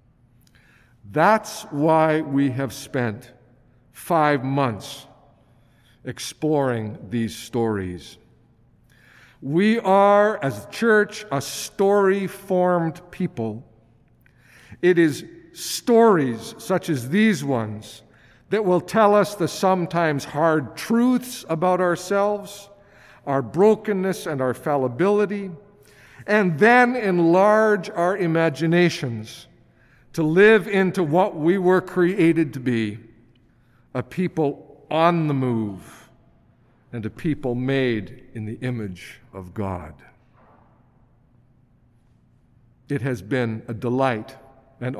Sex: male